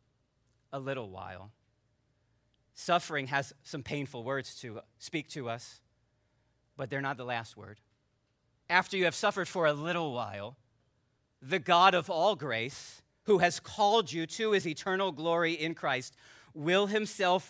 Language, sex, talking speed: English, male, 145 wpm